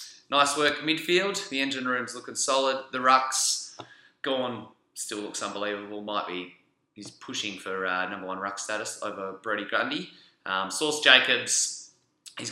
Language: English